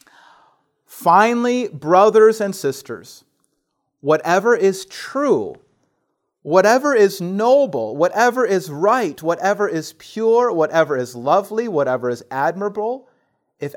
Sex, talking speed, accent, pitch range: male, 100 wpm, American, 145-210 Hz